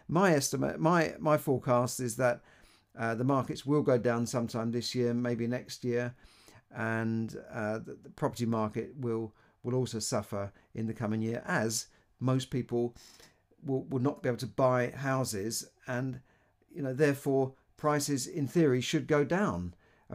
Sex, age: male, 50-69